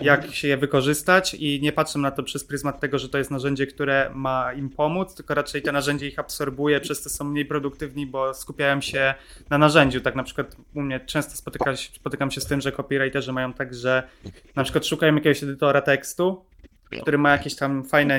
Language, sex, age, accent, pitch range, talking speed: Polish, male, 20-39, native, 135-150 Hz, 210 wpm